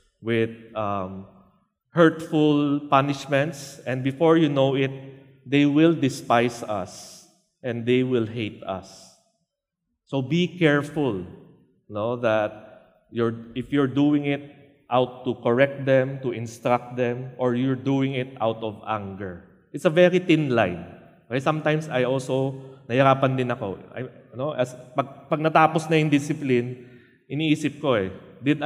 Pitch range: 115-145 Hz